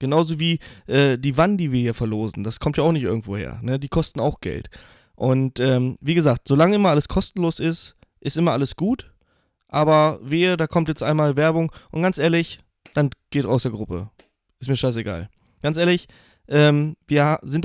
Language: German